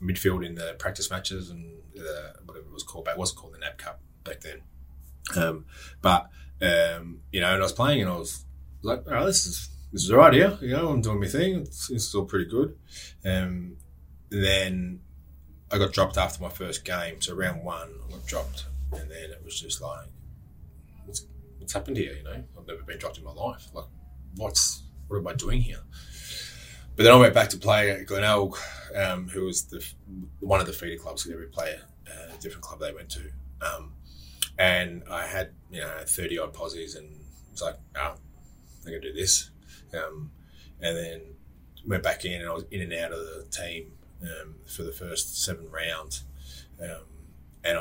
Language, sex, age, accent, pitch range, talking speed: English, male, 20-39, Australian, 70-90 Hz, 200 wpm